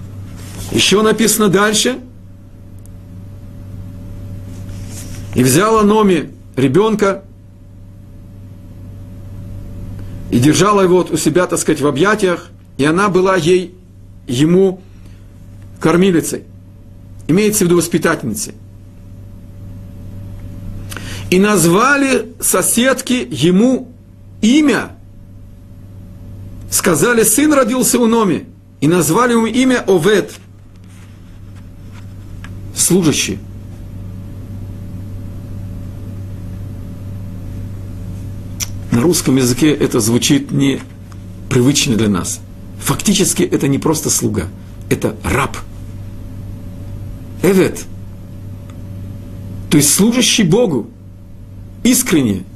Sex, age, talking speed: male, 50-69, 70 wpm